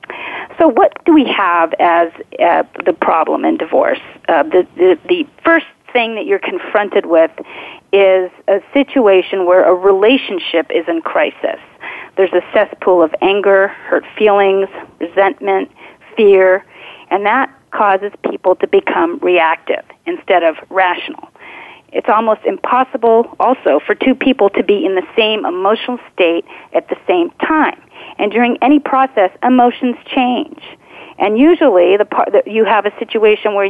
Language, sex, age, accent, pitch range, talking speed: English, female, 40-59, American, 190-280 Hz, 145 wpm